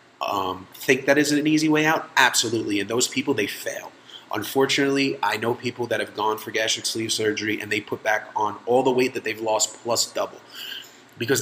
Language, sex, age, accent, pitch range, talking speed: English, male, 30-49, American, 110-135 Hz, 205 wpm